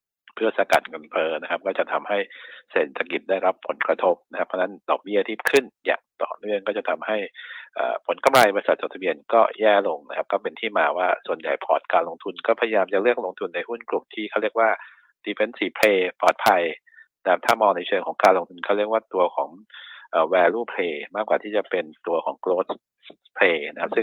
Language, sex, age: Thai, male, 60-79